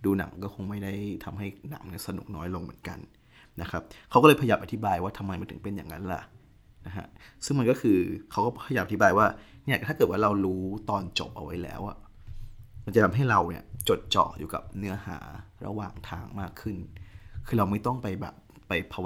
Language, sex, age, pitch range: Thai, male, 20-39, 95-105 Hz